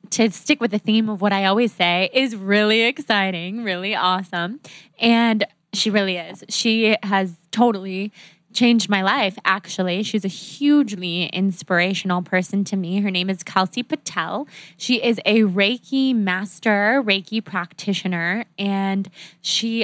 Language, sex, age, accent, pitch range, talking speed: English, female, 20-39, American, 185-225 Hz, 140 wpm